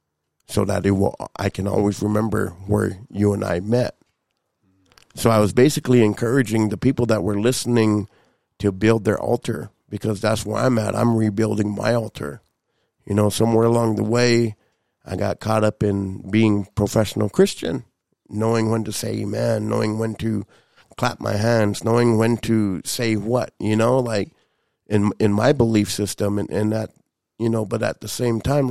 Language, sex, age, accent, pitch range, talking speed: English, male, 50-69, American, 105-120 Hz, 175 wpm